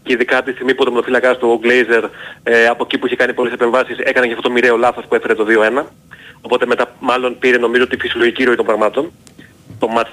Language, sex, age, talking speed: Greek, male, 30-49, 225 wpm